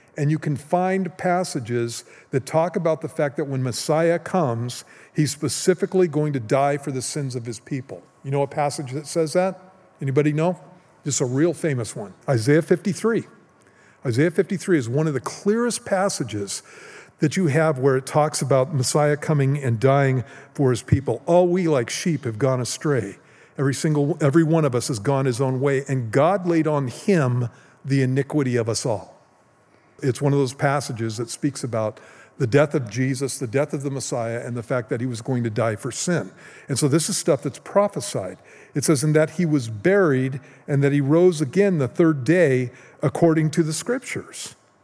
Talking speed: 195 wpm